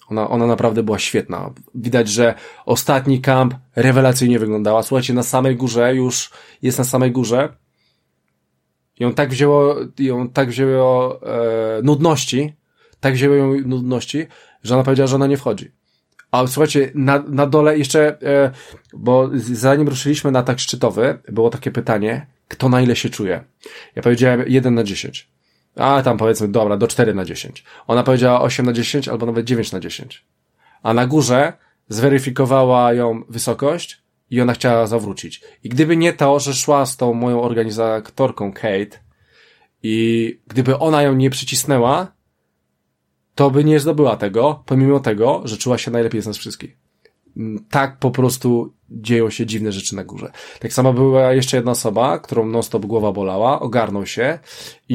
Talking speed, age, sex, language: 165 wpm, 20-39, male, Polish